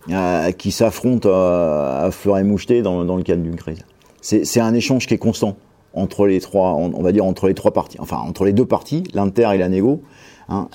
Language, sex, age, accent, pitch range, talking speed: French, male, 40-59, French, 90-115 Hz, 230 wpm